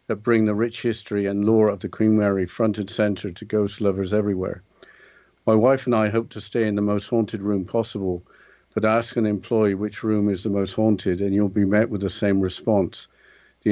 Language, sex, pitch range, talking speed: English, male, 100-110 Hz, 220 wpm